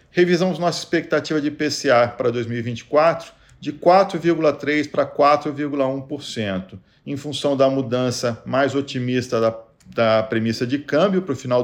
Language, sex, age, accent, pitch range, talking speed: Portuguese, male, 40-59, Brazilian, 130-160 Hz, 130 wpm